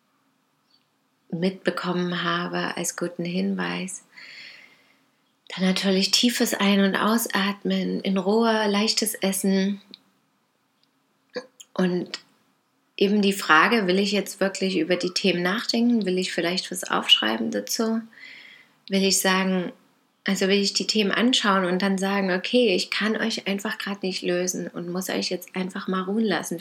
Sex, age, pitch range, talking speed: female, 30-49, 185-220 Hz, 140 wpm